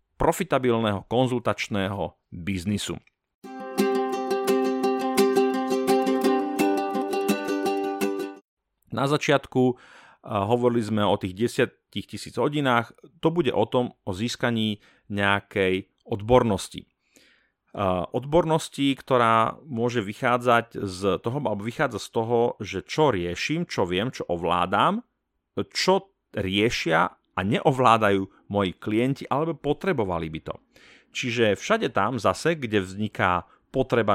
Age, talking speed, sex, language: 40-59, 95 wpm, male, Slovak